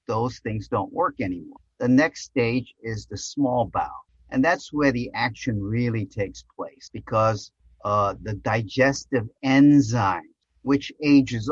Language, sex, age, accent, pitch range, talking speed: English, male, 50-69, American, 105-130 Hz, 140 wpm